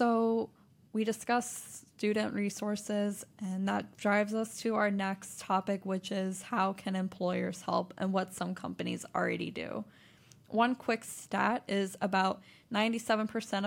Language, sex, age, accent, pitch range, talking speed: English, female, 10-29, American, 180-205 Hz, 135 wpm